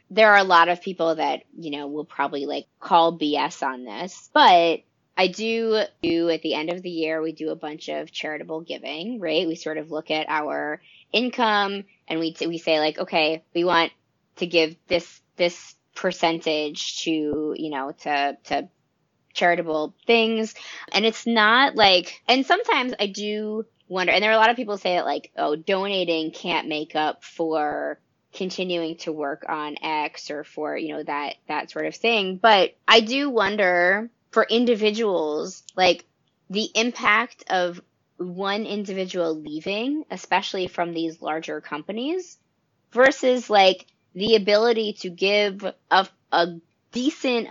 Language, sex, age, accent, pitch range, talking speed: English, female, 20-39, American, 160-210 Hz, 160 wpm